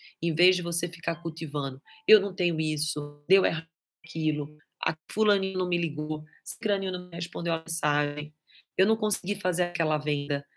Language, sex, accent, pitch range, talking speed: Portuguese, female, Brazilian, 155-190 Hz, 165 wpm